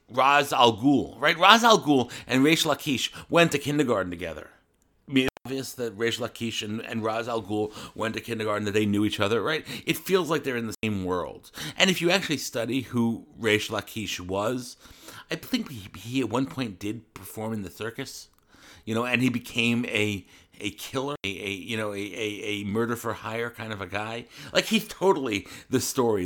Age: 50-69